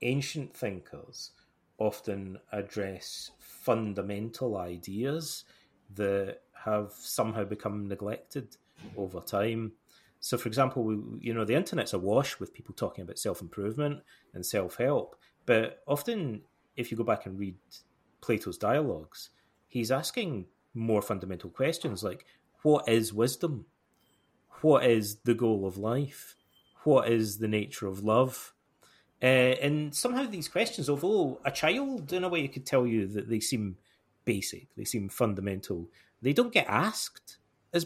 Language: English